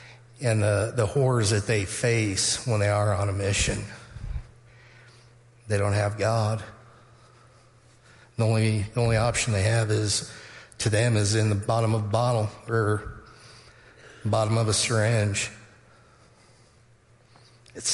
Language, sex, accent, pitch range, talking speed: English, male, American, 105-120 Hz, 135 wpm